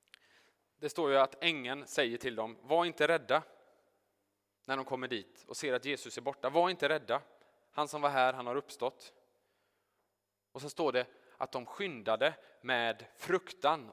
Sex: male